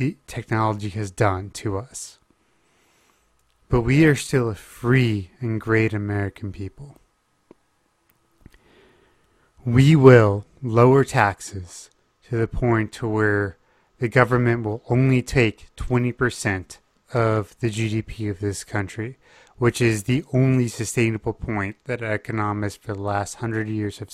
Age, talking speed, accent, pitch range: 30-49, 125 wpm, American, 100-120 Hz